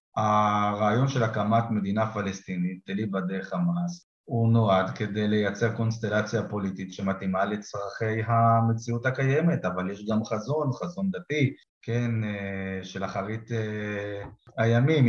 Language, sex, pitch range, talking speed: Hebrew, male, 105-120 Hz, 110 wpm